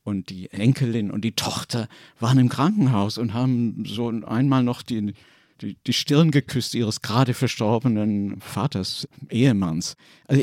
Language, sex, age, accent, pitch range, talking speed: German, male, 60-79, German, 110-140 Hz, 145 wpm